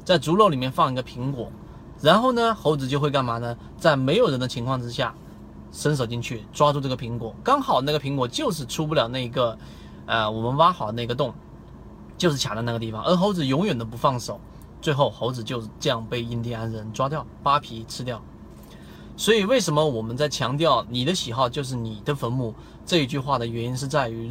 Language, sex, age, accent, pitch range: Chinese, male, 20-39, native, 115-155 Hz